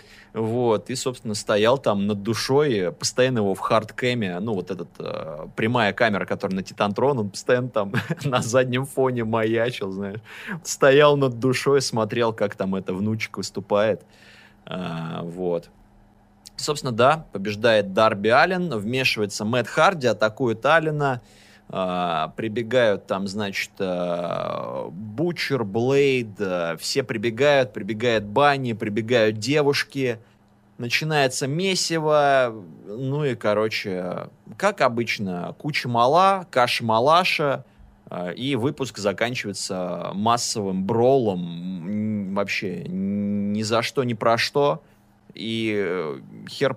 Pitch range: 100-130 Hz